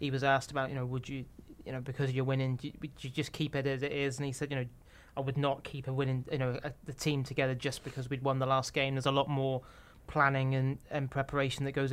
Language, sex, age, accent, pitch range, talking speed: English, male, 30-49, British, 135-150 Hz, 280 wpm